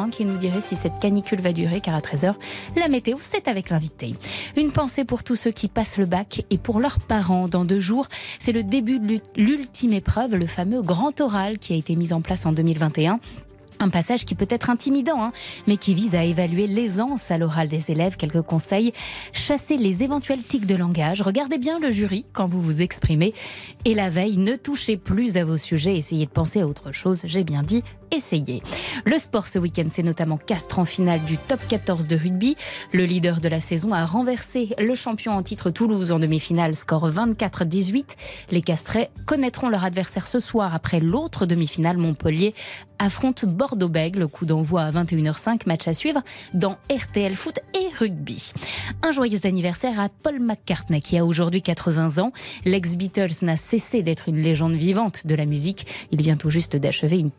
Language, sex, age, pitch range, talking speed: French, female, 20-39, 165-230 Hz, 195 wpm